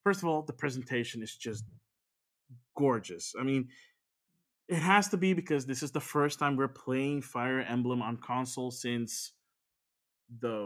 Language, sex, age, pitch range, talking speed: English, male, 20-39, 120-160 Hz, 160 wpm